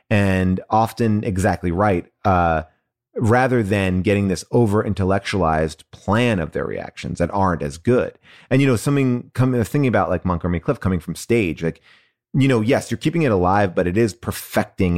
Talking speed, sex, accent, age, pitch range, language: 180 wpm, male, American, 30-49, 90-120 Hz, English